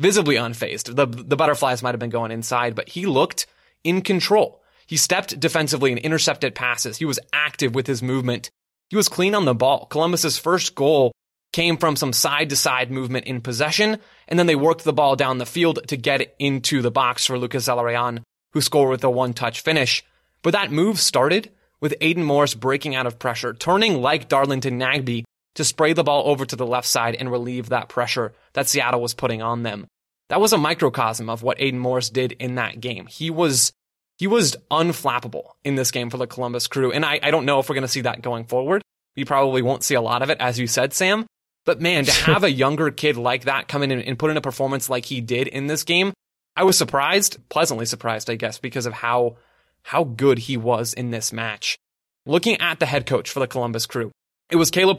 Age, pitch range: 20-39, 125-155 Hz